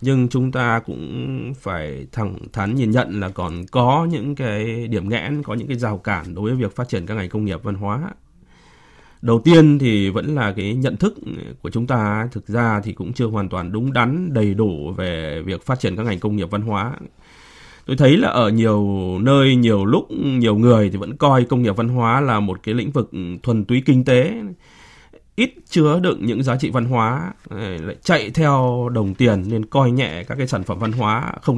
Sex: male